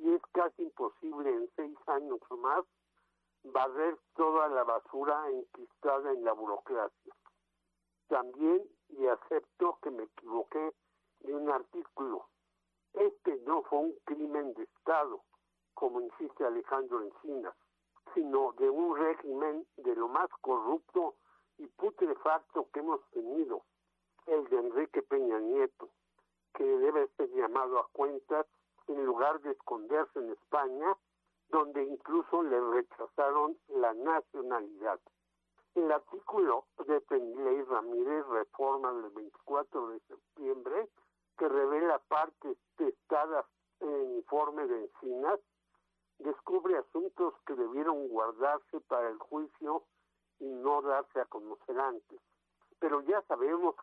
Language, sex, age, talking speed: Spanish, male, 60-79, 120 wpm